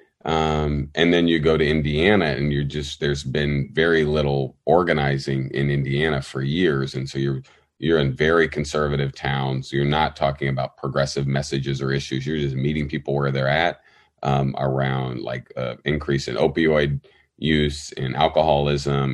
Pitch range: 70-75 Hz